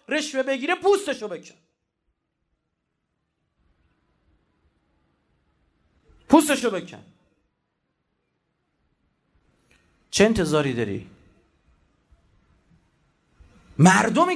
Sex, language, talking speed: male, Persian, 40 wpm